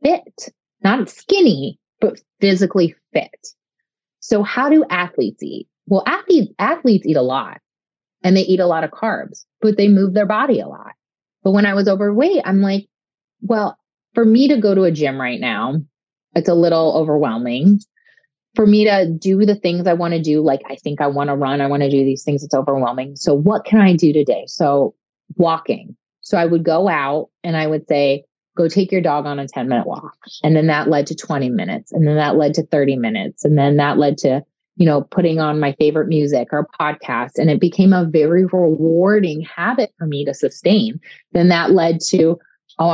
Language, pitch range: English, 150-200 Hz